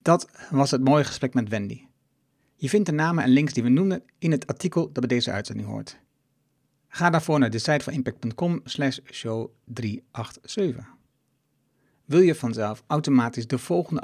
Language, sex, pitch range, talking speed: Dutch, male, 125-145 Hz, 155 wpm